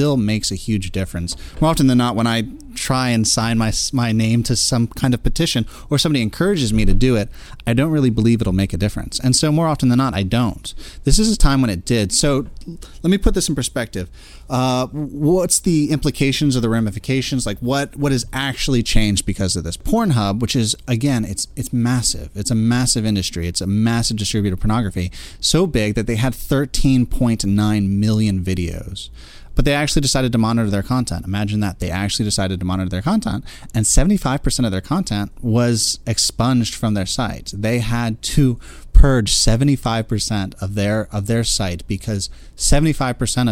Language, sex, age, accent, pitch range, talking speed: English, male, 30-49, American, 100-130 Hz, 190 wpm